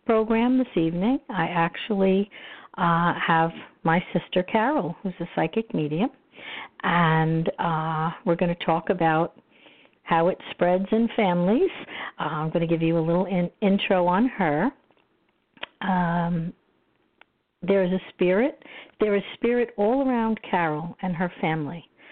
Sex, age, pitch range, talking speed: female, 60-79, 175-230 Hz, 140 wpm